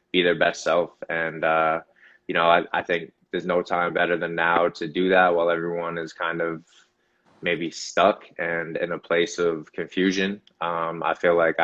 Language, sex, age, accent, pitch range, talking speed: English, male, 20-39, American, 85-95 Hz, 190 wpm